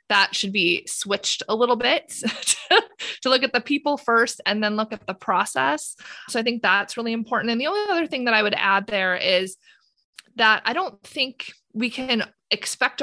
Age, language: 20-39, English